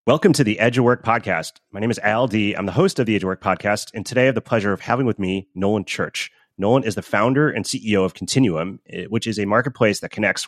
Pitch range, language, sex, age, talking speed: 95-115 Hz, English, male, 30-49, 270 wpm